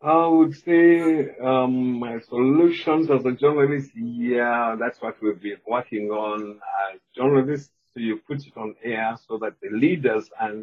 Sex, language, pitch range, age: male, English, 105-145 Hz, 50-69